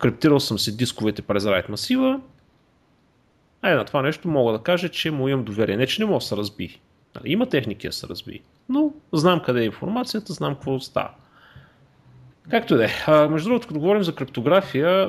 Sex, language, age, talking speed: male, Bulgarian, 30-49, 185 wpm